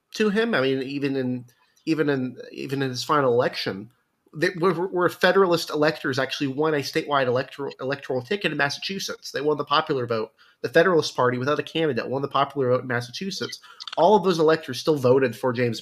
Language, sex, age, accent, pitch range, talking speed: English, male, 30-49, American, 130-160 Hz, 195 wpm